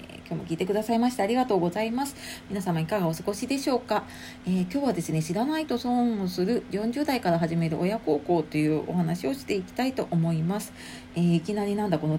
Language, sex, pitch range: Japanese, female, 165-230 Hz